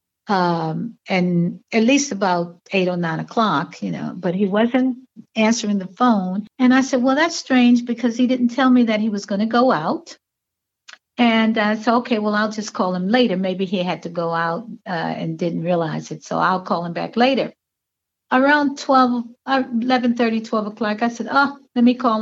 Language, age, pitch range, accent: English, 60-79, 185-240 Hz, American